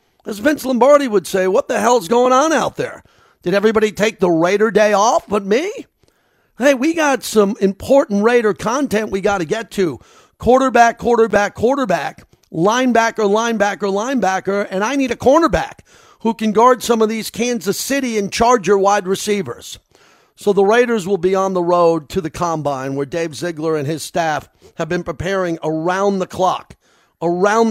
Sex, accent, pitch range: male, American, 170-215 Hz